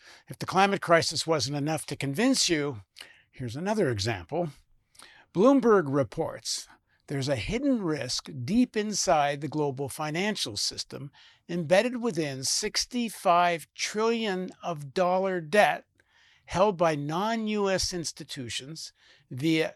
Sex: male